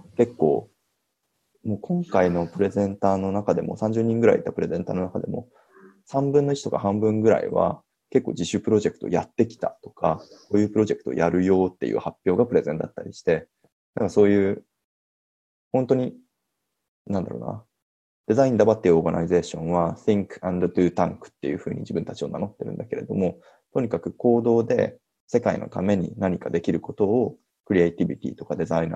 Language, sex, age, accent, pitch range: English, male, 20-39, Japanese, 90-115 Hz